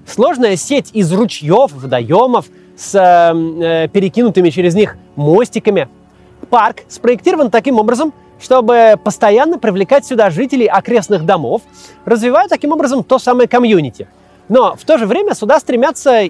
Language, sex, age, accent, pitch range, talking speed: Russian, male, 30-49, native, 150-245 Hz, 130 wpm